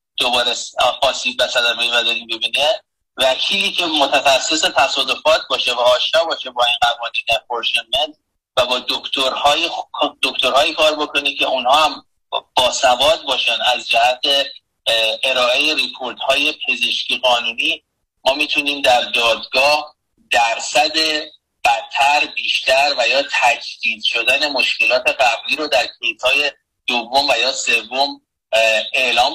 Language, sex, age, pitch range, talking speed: Persian, male, 30-49, 120-155 Hz, 110 wpm